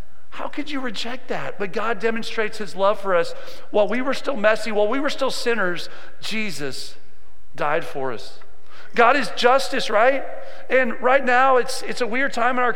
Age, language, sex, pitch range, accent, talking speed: 40-59, English, male, 190-250 Hz, American, 190 wpm